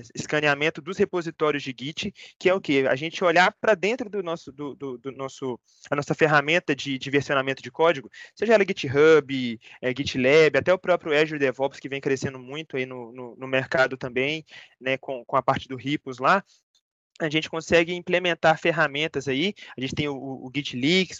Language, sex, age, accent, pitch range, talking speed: Portuguese, male, 20-39, Brazilian, 140-185 Hz, 190 wpm